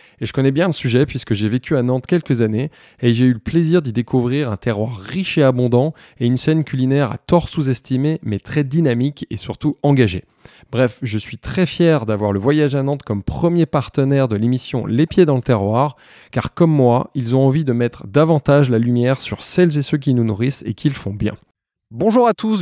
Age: 20-39